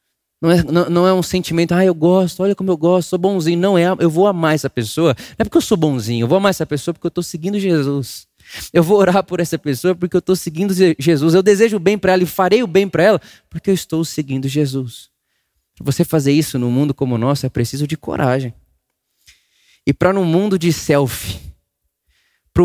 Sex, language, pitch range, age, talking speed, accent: male, Portuguese, 125-175 Hz, 20-39, 230 wpm, Brazilian